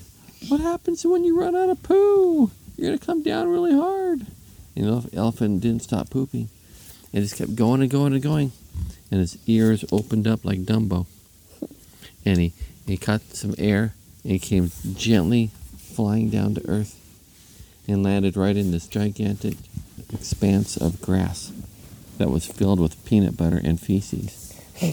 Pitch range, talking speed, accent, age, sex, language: 90-120 Hz, 160 wpm, American, 50-69, male, English